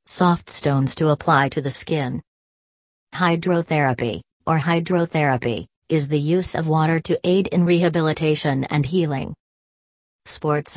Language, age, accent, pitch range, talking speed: English, 40-59, American, 135-170 Hz, 125 wpm